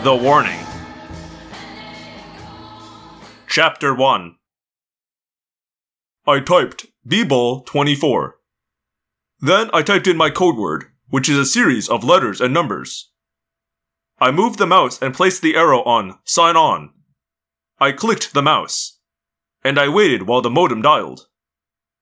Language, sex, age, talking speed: English, male, 30-49, 120 wpm